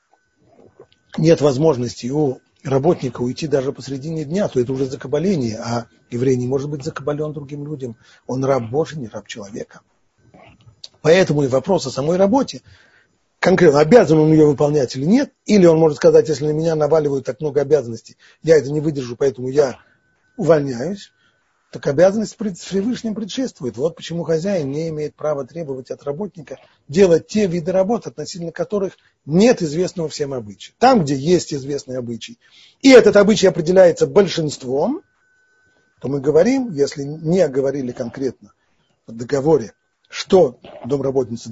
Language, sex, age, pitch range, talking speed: Russian, male, 40-59, 135-190 Hz, 145 wpm